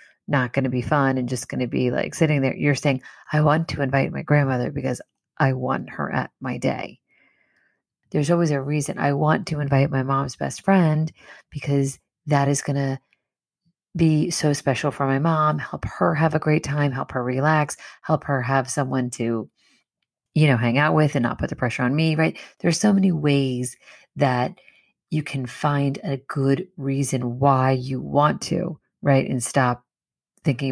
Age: 30-49